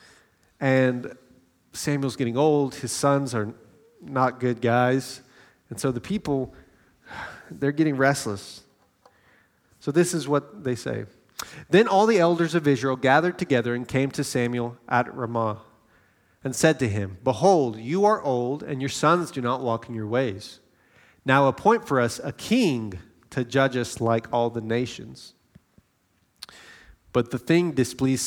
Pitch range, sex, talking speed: 110-145 Hz, male, 150 wpm